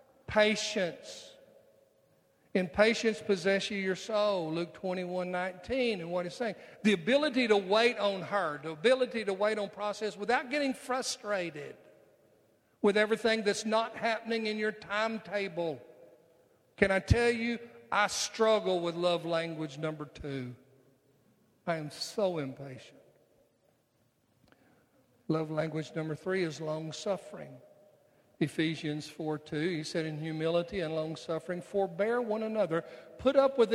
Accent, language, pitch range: American, English, 160-215 Hz